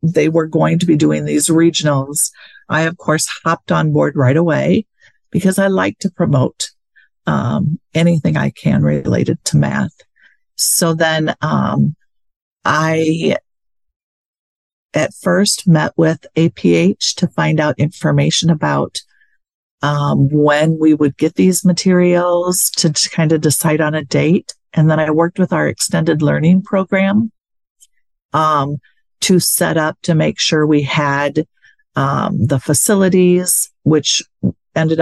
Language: English